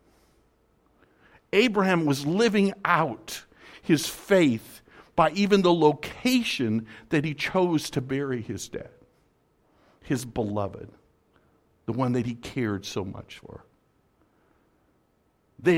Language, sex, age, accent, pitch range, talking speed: English, male, 60-79, American, 105-160 Hz, 105 wpm